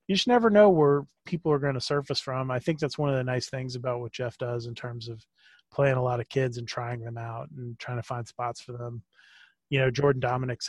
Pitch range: 125-140 Hz